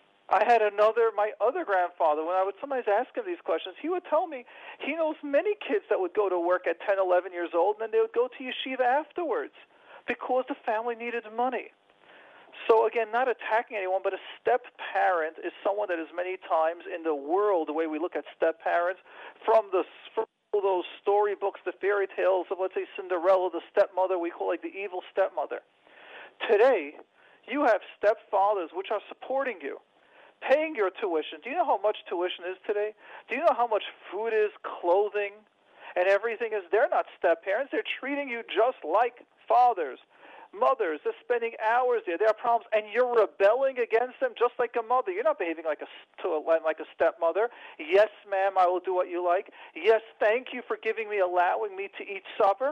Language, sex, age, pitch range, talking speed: English, male, 40-59, 185-255 Hz, 200 wpm